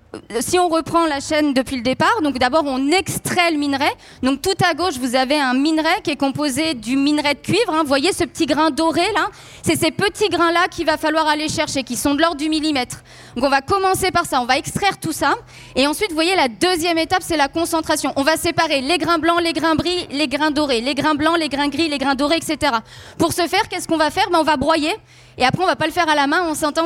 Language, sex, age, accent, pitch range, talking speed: French, female, 20-39, French, 290-345 Hz, 265 wpm